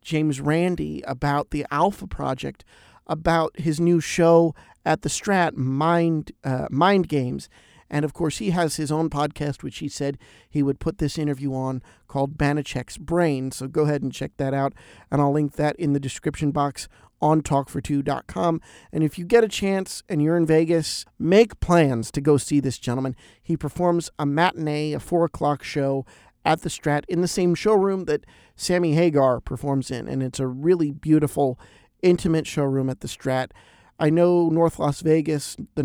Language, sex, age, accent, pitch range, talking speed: English, male, 50-69, American, 135-165 Hz, 180 wpm